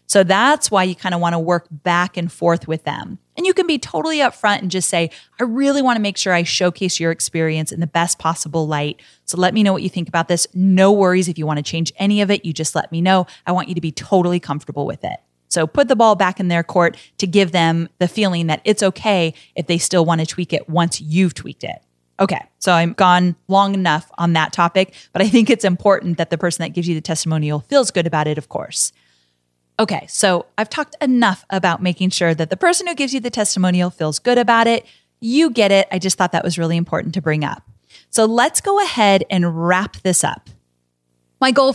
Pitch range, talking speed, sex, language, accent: 170-210 Hz, 245 wpm, female, English, American